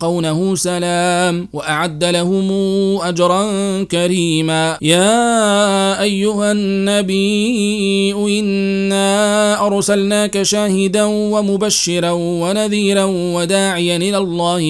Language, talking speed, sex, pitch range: Arabic, 70 wpm, male, 170-195 Hz